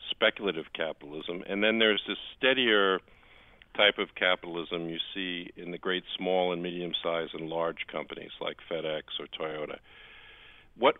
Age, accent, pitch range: 50-69, American, 85-95 Hz